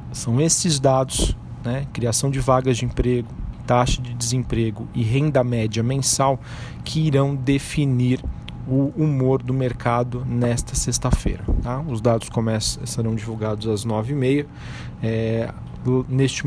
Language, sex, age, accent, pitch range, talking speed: Portuguese, male, 40-59, Brazilian, 115-130 Hz, 135 wpm